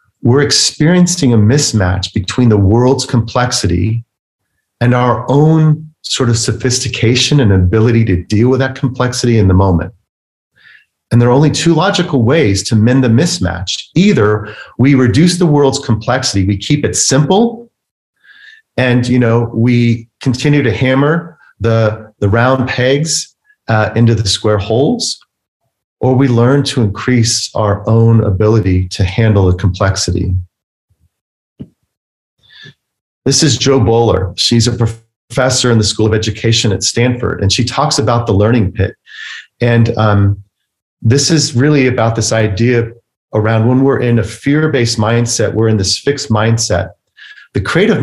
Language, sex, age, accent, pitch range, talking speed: English, male, 40-59, American, 105-130 Hz, 145 wpm